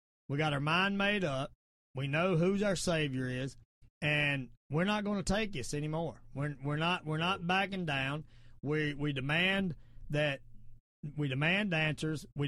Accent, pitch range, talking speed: American, 135-175 Hz, 165 wpm